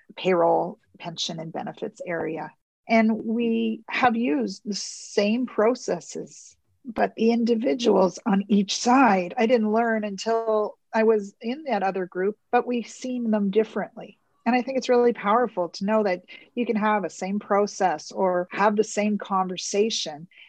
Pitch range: 190-230 Hz